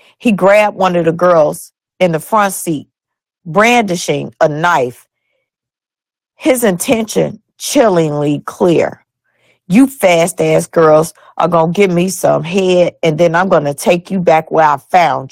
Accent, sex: American, female